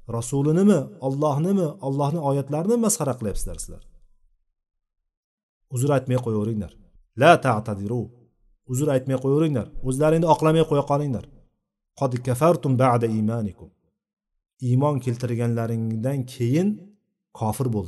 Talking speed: 130 wpm